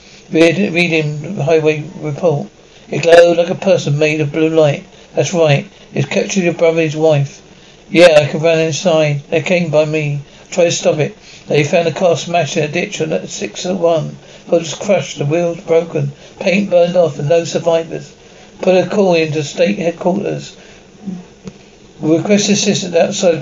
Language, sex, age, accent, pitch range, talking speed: English, male, 60-79, British, 155-180 Hz, 175 wpm